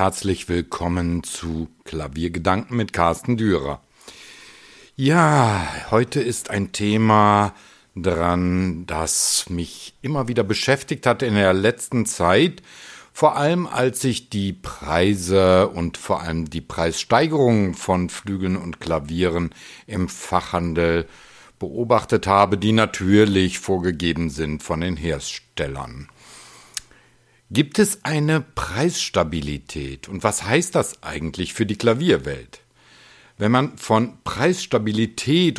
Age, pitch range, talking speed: 60-79, 90-120 Hz, 110 wpm